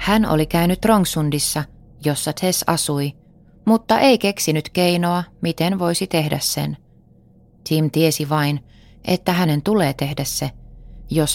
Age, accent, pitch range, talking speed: 20-39, native, 145-175 Hz, 125 wpm